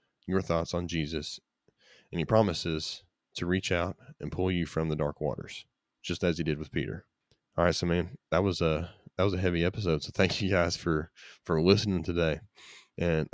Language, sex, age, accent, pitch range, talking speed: English, male, 20-39, American, 80-95 Hz, 200 wpm